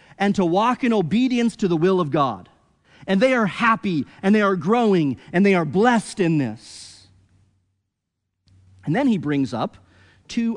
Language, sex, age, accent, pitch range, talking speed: English, male, 40-59, American, 140-200 Hz, 170 wpm